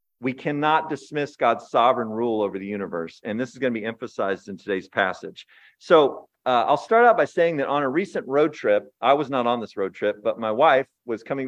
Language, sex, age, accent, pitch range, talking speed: English, male, 40-59, American, 115-155 Hz, 230 wpm